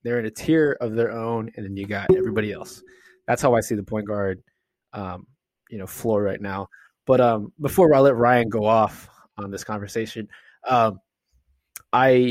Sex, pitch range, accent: male, 110-135 Hz, American